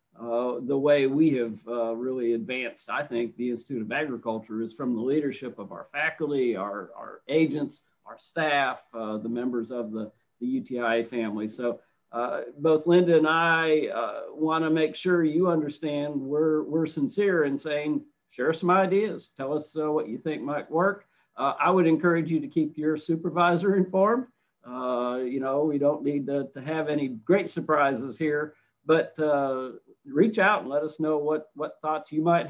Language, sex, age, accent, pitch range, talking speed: English, male, 50-69, American, 125-160 Hz, 185 wpm